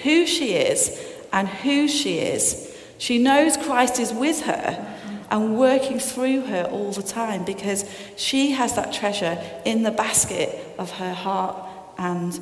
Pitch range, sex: 180-250 Hz, female